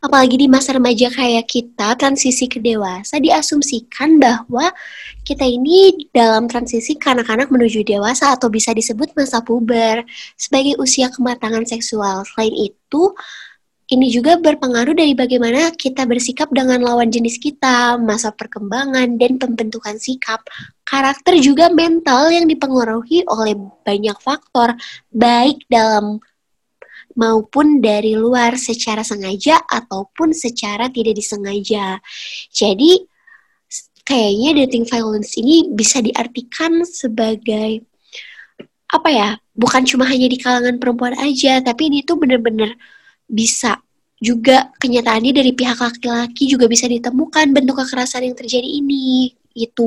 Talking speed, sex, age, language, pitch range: 120 wpm, female, 20-39, Indonesian, 230-280 Hz